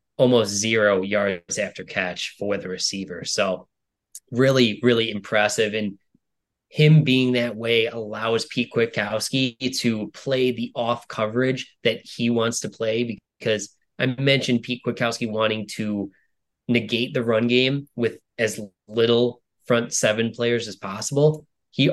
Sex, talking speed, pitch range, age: male, 135 wpm, 105-120 Hz, 20-39